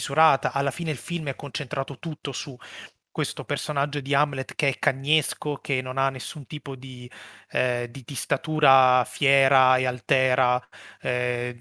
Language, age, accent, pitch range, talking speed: Italian, 30-49, native, 130-155 Hz, 150 wpm